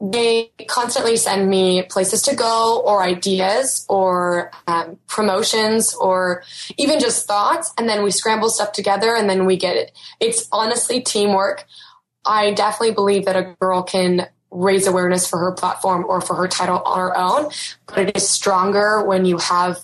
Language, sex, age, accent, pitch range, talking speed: English, female, 20-39, American, 185-215 Hz, 170 wpm